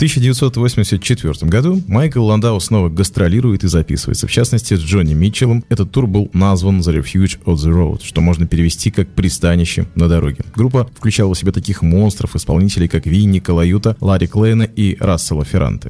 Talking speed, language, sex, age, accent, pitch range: 165 wpm, Russian, male, 20-39, native, 90-120 Hz